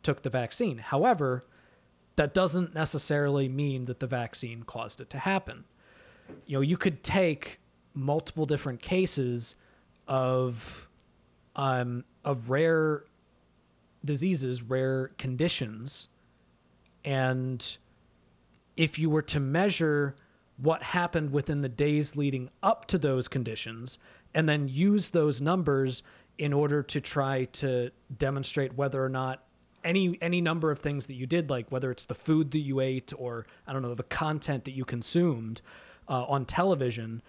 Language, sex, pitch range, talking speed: English, male, 125-155 Hz, 140 wpm